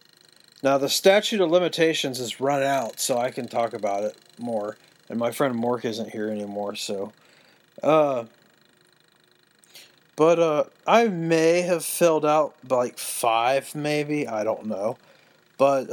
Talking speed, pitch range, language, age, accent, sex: 145 wpm, 125-160 Hz, English, 40-59, American, male